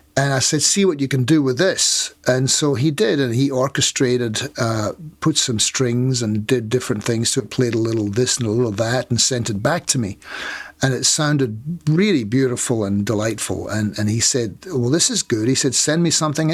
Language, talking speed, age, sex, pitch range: English, 225 wpm, 50-69, male, 115-145 Hz